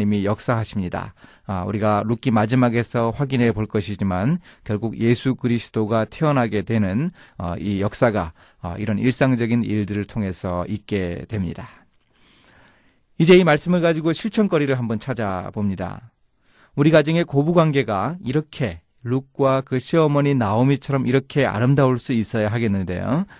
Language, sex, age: Korean, male, 30-49